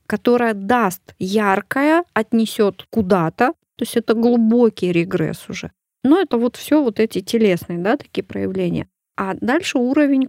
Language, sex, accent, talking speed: Russian, female, native, 140 wpm